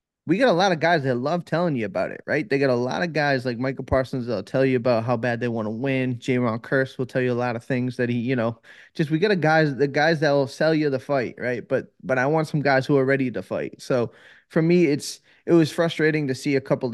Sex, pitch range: male, 125-150 Hz